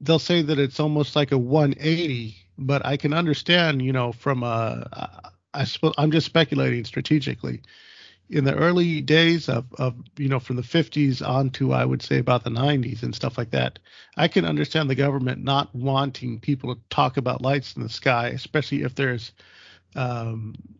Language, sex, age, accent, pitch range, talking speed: English, male, 40-59, American, 120-150 Hz, 185 wpm